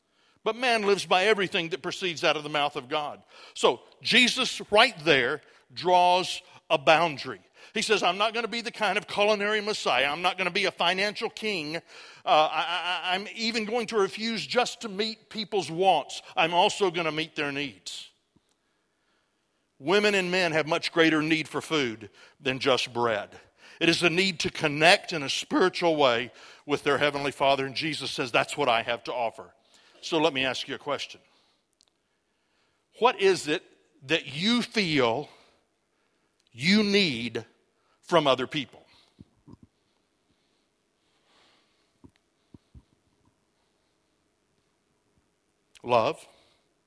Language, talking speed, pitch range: English, 145 wpm, 150-210 Hz